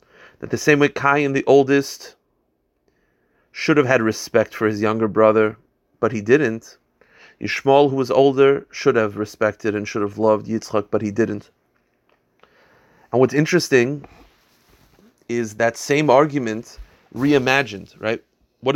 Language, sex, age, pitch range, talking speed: English, male, 30-49, 110-140 Hz, 140 wpm